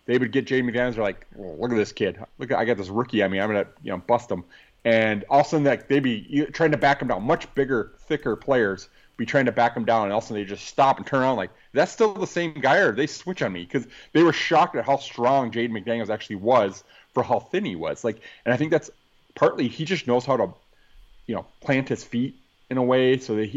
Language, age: English, 30-49